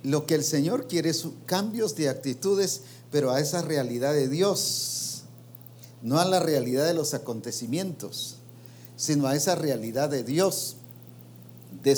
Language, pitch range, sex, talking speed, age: English, 120-160 Hz, male, 145 wpm, 50-69